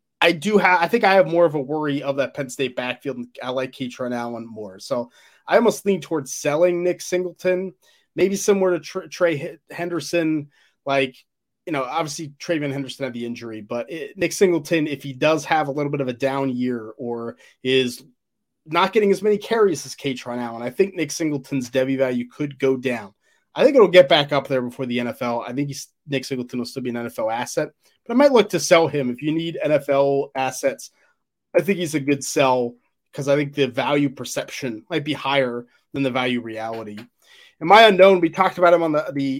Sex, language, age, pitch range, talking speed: male, English, 20-39, 130-175 Hz, 210 wpm